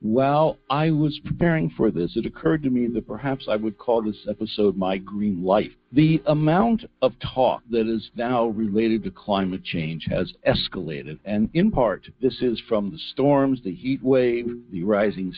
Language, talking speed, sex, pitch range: English, 180 wpm, male, 105-140 Hz